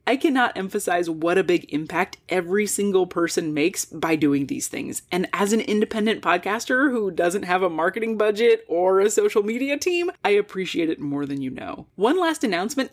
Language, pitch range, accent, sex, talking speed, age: English, 180-265 Hz, American, female, 190 wpm, 20-39